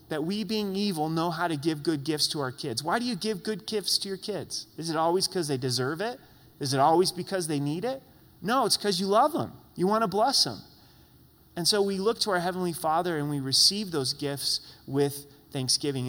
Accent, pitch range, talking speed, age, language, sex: American, 130-175 Hz, 230 wpm, 30-49, English, male